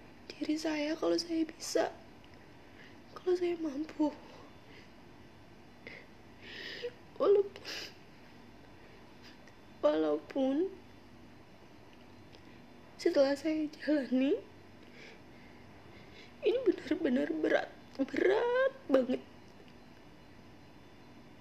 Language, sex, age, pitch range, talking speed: Indonesian, female, 20-39, 200-310 Hz, 50 wpm